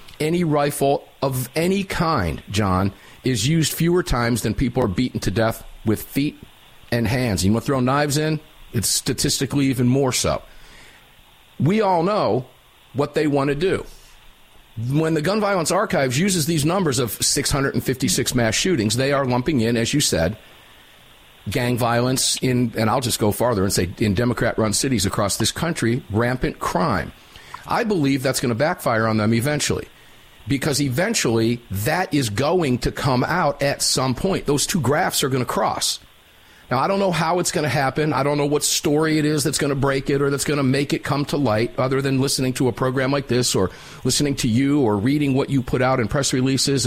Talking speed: 195 wpm